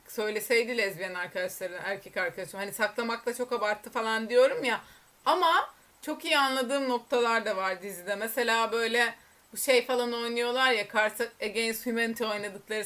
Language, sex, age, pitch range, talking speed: Turkish, female, 30-49, 215-260 Hz, 140 wpm